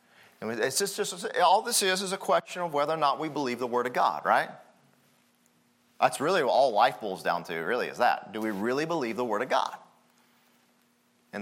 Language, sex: English, male